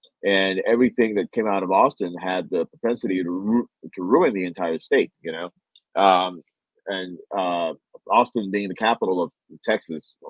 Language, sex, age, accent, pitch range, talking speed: English, male, 40-59, American, 95-120 Hz, 155 wpm